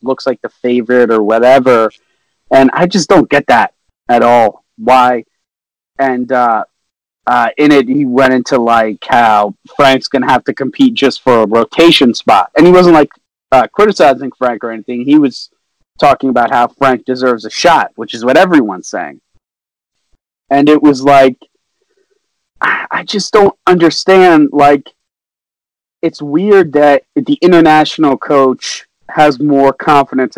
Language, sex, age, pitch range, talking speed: English, male, 30-49, 130-160 Hz, 150 wpm